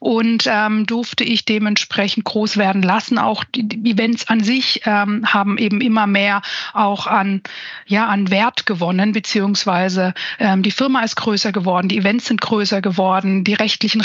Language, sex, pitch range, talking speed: German, female, 200-230 Hz, 160 wpm